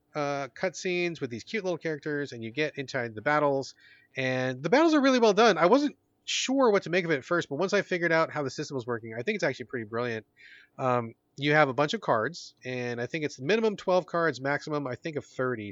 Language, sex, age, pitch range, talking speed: English, male, 30-49, 125-175 Hz, 250 wpm